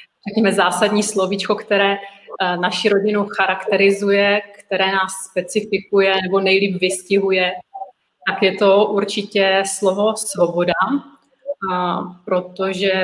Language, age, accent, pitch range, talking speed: Czech, 30-49, native, 190-210 Hz, 90 wpm